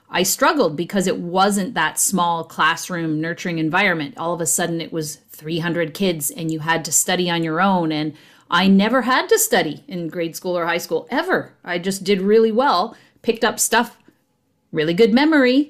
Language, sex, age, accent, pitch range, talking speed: English, female, 30-49, American, 165-210 Hz, 190 wpm